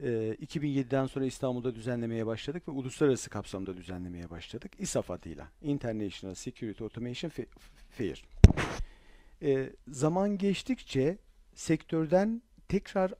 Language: Turkish